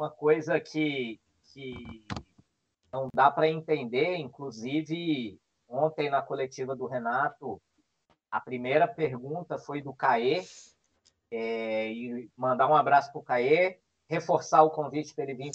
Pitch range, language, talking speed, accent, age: 125-185 Hz, Portuguese, 120 wpm, Brazilian, 20-39